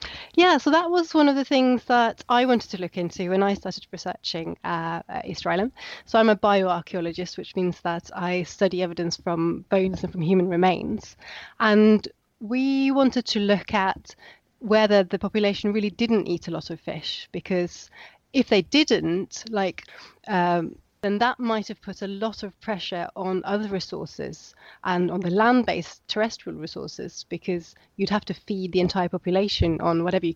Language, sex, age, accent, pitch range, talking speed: English, female, 30-49, British, 175-215 Hz, 175 wpm